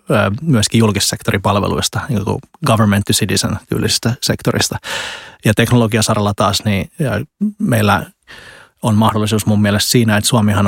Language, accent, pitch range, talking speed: Finnish, native, 100-115 Hz, 105 wpm